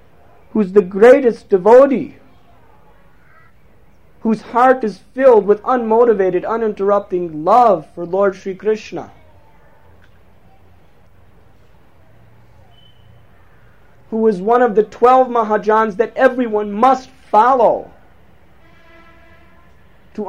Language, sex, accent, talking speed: English, male, American, 85 wpm